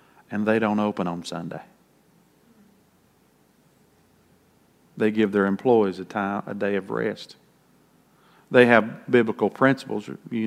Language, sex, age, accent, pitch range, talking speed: English, male, 50-69, American, 110-140 Hz, 120 wpm